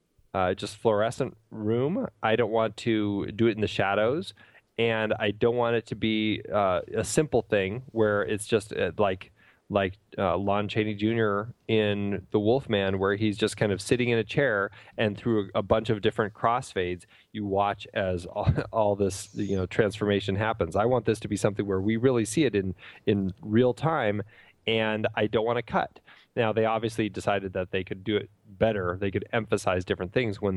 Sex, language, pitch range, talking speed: male, English, 100-115 Hz, 200 wpm